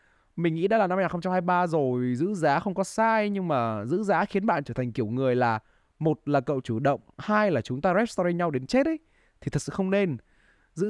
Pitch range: 125-180 Hz